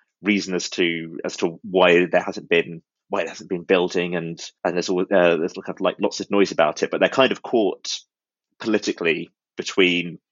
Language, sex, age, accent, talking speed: English, male, 20-39, British, 190 wpm